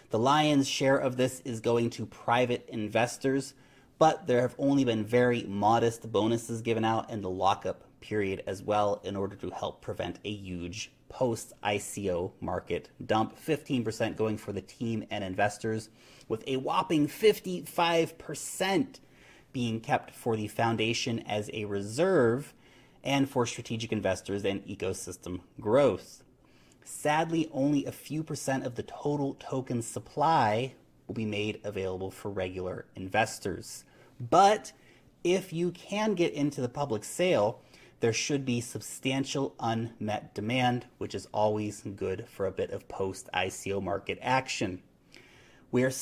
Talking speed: 140 wpm